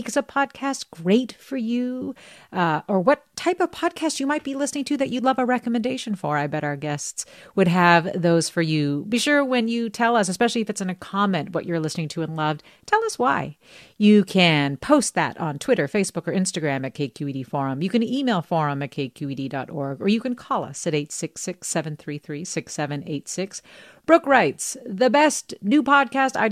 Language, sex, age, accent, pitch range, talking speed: English, female, 40-59, American, 165-245 Hz, 190 wpm